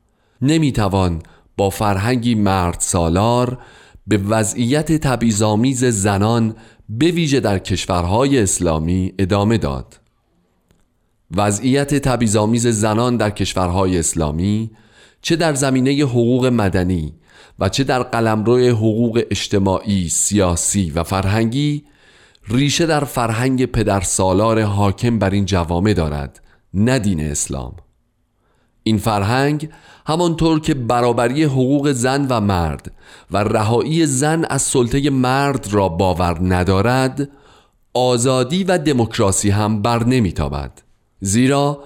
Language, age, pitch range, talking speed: Persian, 40-59, 95-130 Hz, 110 wpm